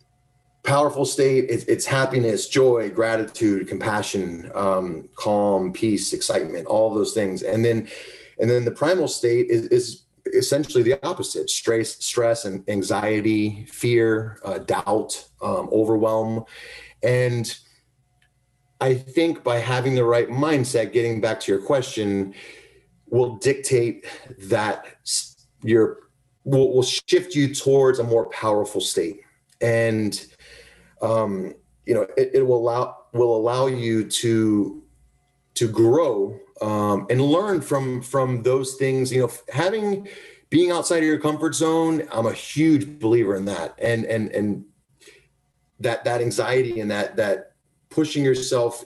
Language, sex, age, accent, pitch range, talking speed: English, male, 30-49, American, 110-140 Hz, 130 wpm